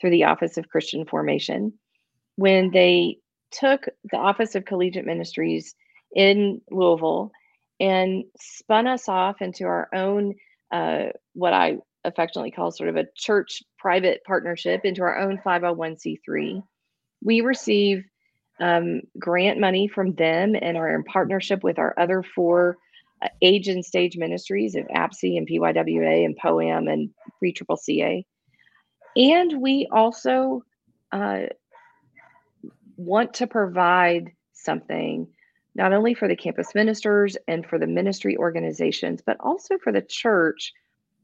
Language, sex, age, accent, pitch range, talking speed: English, female, 40-59, American, 175-220 Hz, 130 wpm